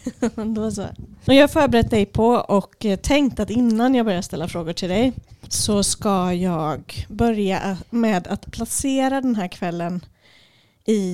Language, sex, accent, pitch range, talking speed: Swedish, female, native, 190-240 Hz, 140 wpm